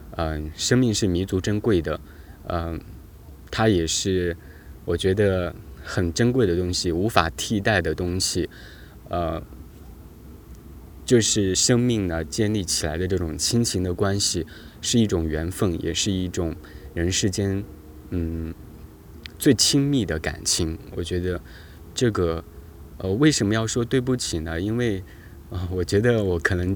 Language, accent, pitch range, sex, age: Chinese, native, 80-105 Hz, male, 20-39